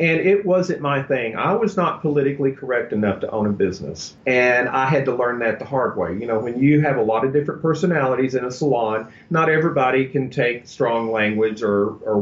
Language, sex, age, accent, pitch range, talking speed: English, male, 40-59, American, 110-145 Hz, 220 wpm